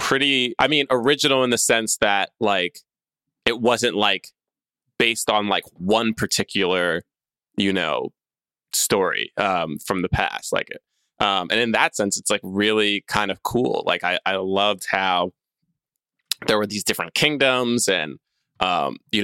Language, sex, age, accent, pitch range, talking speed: English, male, 20-39, American, 100-115 Hz, 155 wpm